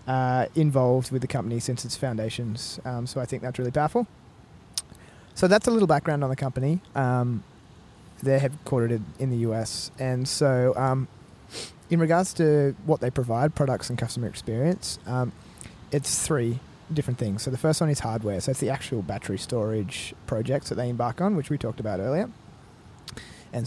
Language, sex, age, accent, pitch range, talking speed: English, male, 30-49, Australian, 115-140 Hz, 175 wpm